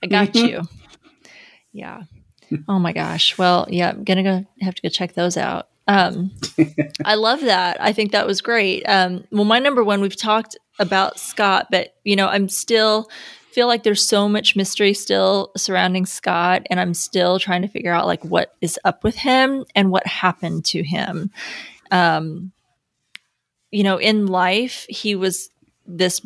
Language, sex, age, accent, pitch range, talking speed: English, female, 20-39, American, 175-205 Hz, 175 wpm